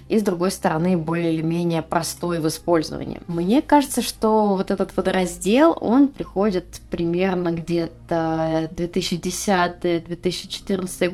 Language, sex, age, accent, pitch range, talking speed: Russian, female, 20-39, native, 160-190 Hz, 115 wpm